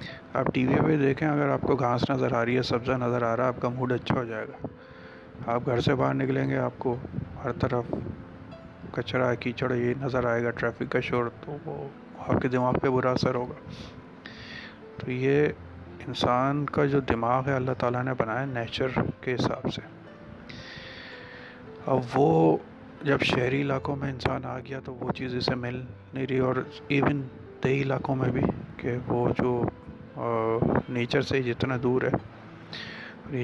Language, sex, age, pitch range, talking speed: Urdu, male, 30-49, 120-130 Hz, 180 wpm